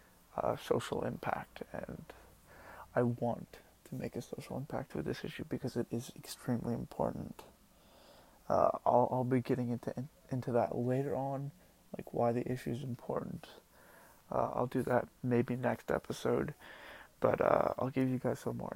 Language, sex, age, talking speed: English, male, 20-39, 165 wpm